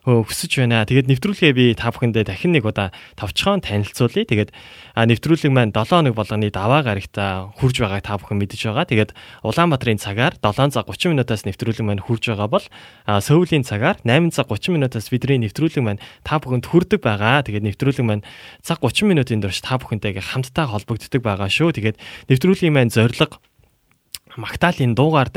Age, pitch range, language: 20-39, 105-135 Hz, Korean